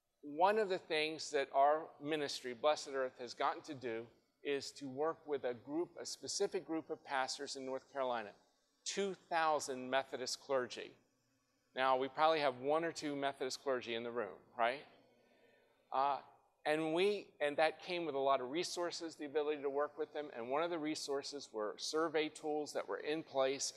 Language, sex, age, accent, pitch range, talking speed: English, male, 40-59, American, 130-155 Hz, 175 wpm